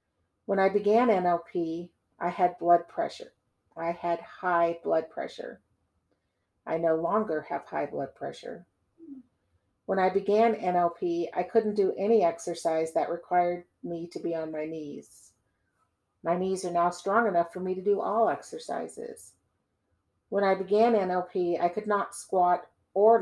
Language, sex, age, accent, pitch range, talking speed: English, female, 50-69, American, 160-195 Hz, 150 wpm